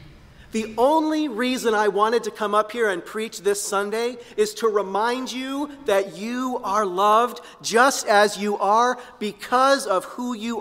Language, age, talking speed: English, 40-59, 165 wpm